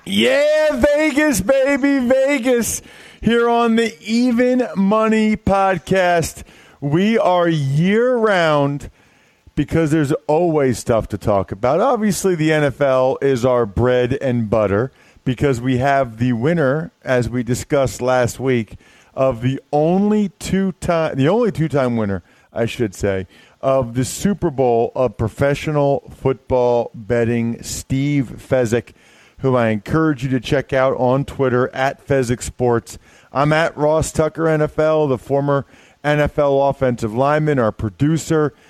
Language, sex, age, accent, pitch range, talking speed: English, male, 40-59, American, 120-155 Hz, 135 wpm